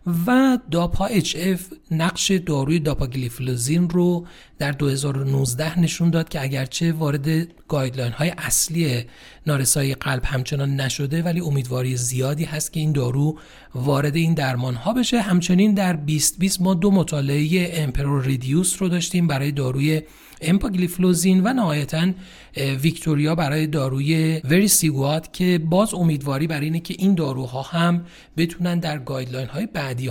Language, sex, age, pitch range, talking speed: Persian, male, 40-59, 140-180 Hz, 140 wpm